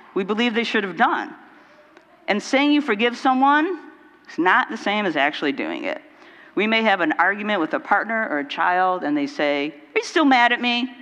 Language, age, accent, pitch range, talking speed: English, 50-69, American, 195-290 Hz, 210 wpm